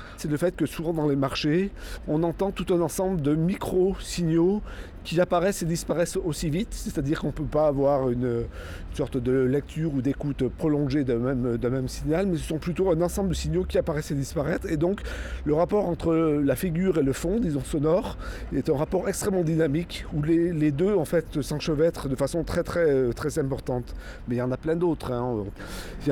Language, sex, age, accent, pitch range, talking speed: French, male, 40-59, French, 135-170 Hz, 215 wpm